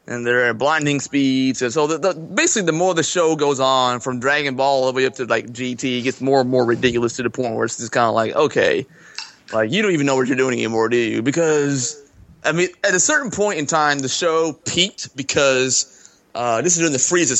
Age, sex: 20-39, male